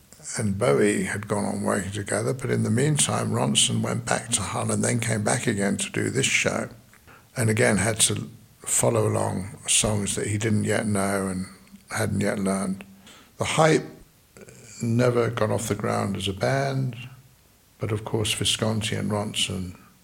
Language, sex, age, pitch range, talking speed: English, male, 60-79, 100-115 Hz, 170 wpm